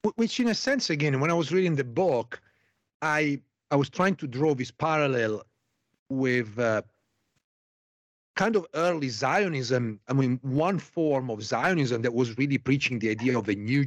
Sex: male